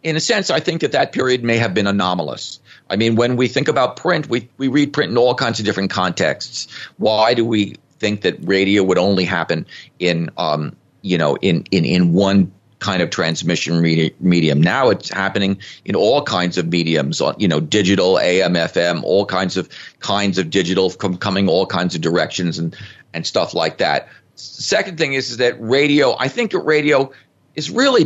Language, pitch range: English, 90-120 Hz